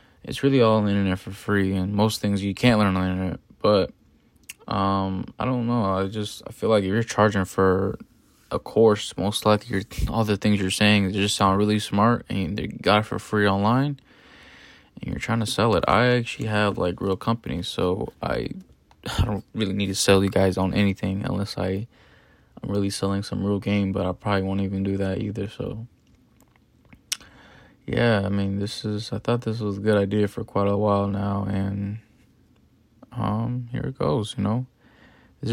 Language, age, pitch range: English, 20-39, 95-110 Hz